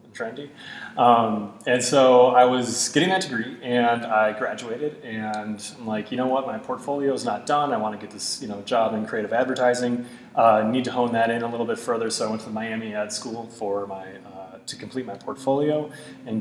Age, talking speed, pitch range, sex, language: 30-49, 225 wpm, 110-135 Hz, male, English